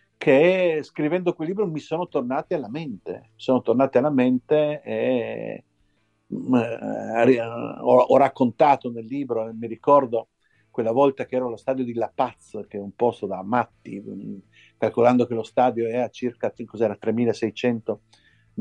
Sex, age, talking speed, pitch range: male, 50-69, 145 wpm, 115-135 Hz